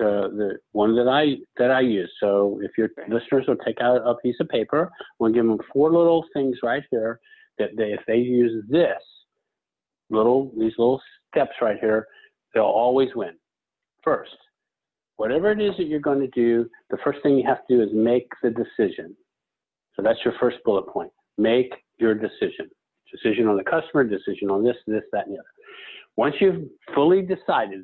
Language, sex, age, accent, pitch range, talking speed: English, male, 50-69, American, 115-165 Hz, 190 wpm